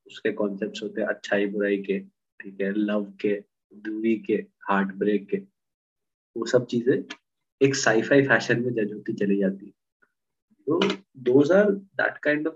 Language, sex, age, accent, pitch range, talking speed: Hindi, male, 20-39, native, 105-130 Hz, 115 wpm